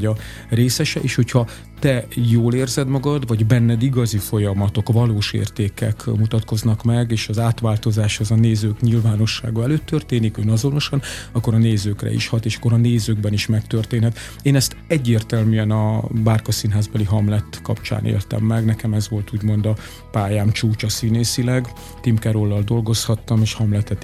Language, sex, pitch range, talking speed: Hungarian, male, 105-120 Hz, 145 wpm